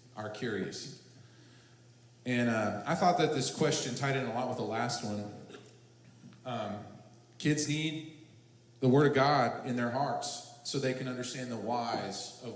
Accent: American